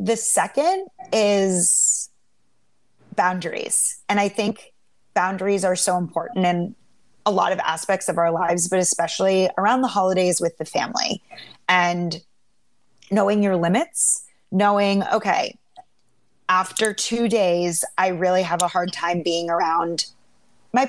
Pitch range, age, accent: 180-225 Hz, 30-49, American